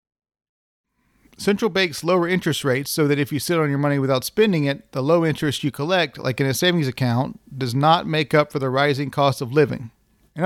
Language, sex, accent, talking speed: English, male, American, 210 wpm